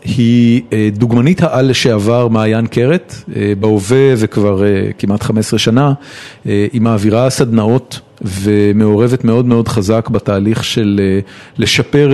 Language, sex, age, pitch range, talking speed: Hebrew, male, 40-59, 110-130 Hz, 110 wpm